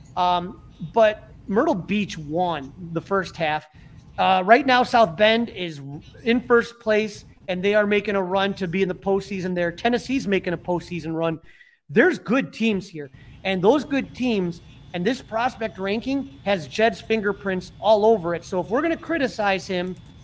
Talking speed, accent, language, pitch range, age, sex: 175 wpm, American, English, 170-230 Hz, 30-49, male